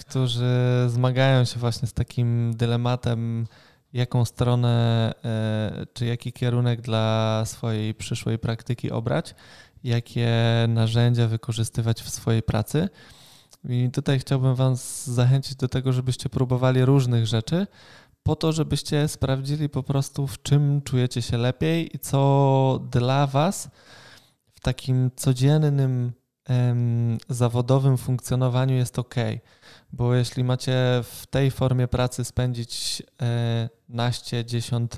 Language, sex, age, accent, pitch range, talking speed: Polish, male, 20-39, native, 120-135 Hz, 115 wpm